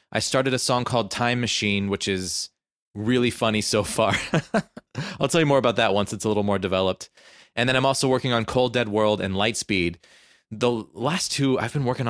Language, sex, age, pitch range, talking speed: English, male, 20-39, 100-135 Hz, 210 wpm